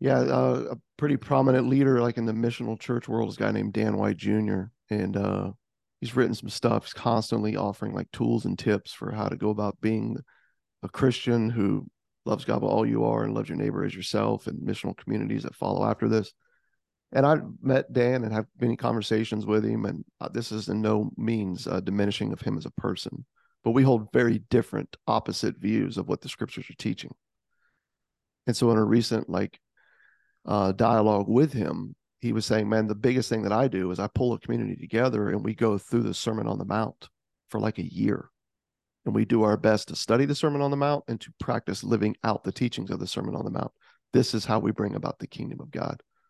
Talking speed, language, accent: 220 wpm, English, American